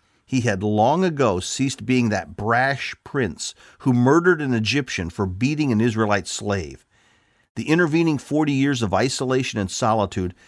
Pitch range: 100-135 Hz